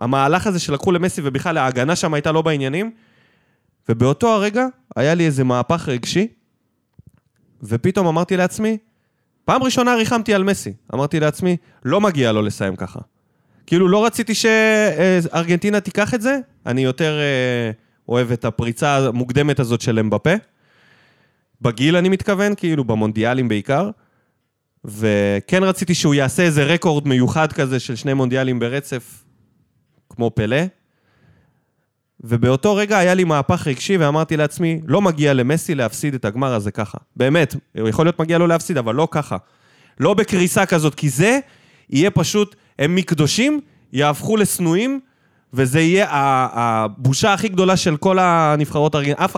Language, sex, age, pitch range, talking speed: Hebrew, male, 20-39, 125-185 Hz, 140 wpm